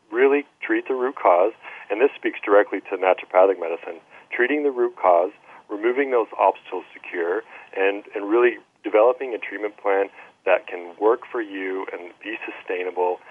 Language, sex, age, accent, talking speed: English, male, 40-59, American, 160 wpm